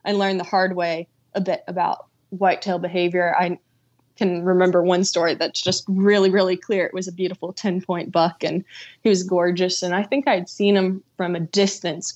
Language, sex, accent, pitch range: English, female, American, 175-195 Hz